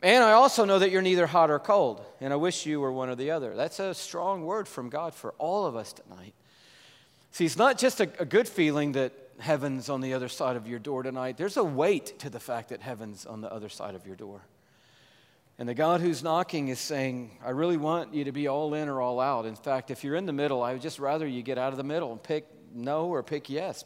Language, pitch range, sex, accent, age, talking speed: English, 125-150 Hz, male, American, 40-59, 260 wpm